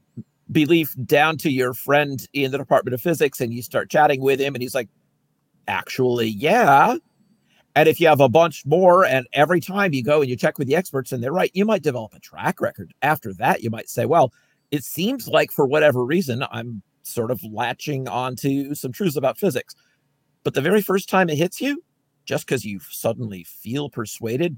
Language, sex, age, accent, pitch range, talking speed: English, male, 50-69, American, 120-155 Hz, 205 wpm